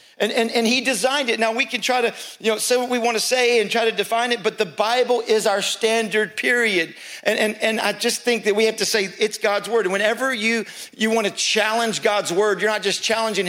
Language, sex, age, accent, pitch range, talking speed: English, male, 50-69, American, 210-245 Hz, 260 wpm